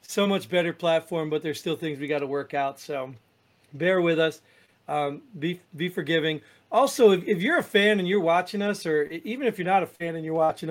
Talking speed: 230 wpm